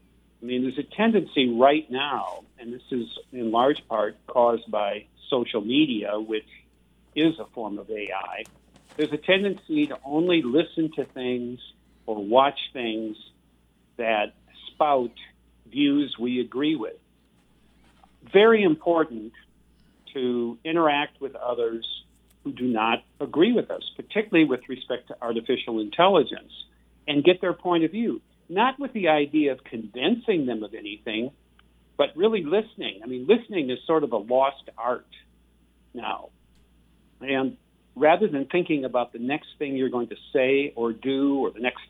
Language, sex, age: English, male, 50-69